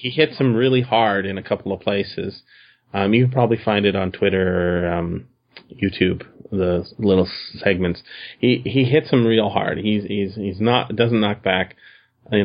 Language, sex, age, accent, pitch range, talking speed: English, male, 30-49, American, 105-130 Hz, 185 wpm